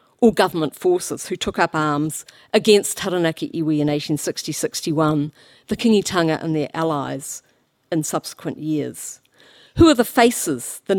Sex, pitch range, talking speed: female, 150-190 Hz, 135 wpm